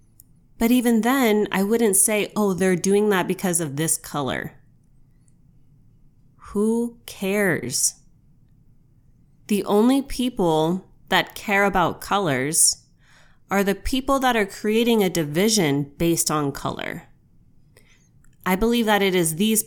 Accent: American